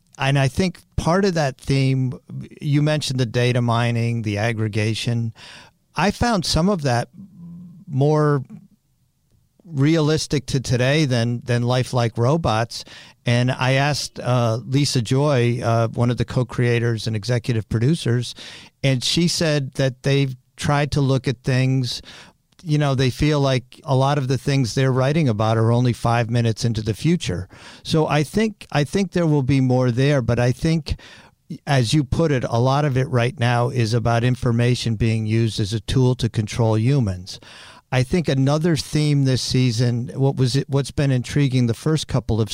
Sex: male